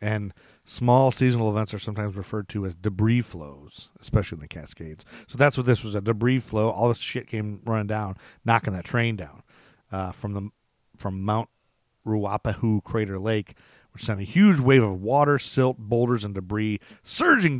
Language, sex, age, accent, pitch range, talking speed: English, male, 40-59, American, 100-125 Hz, 180 wpm